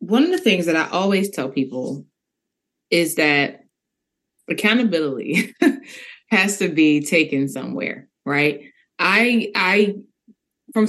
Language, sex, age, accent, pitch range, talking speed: English, female, 20-39, American, 150-200 Hz, 115 wpm